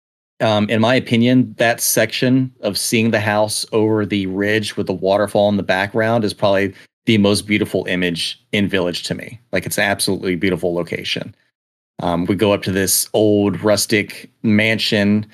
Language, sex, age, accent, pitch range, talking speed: English, male, 30-49, American, 95-110 Hz, 170 wpm